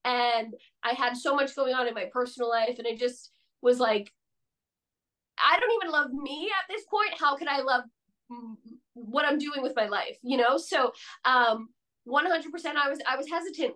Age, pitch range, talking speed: 20-39, 245-310 Hz, 190 wpm